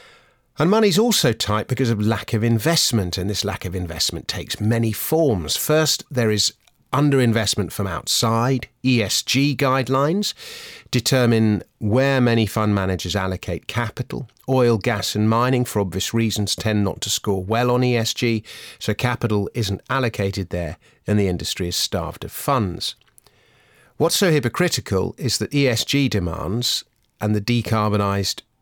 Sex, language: male, English